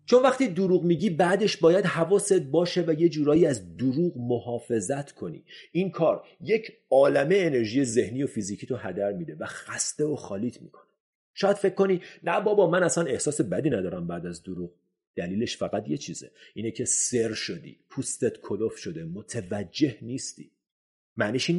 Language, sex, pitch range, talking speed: Persian, male, 105-165 Hz, 160 wpm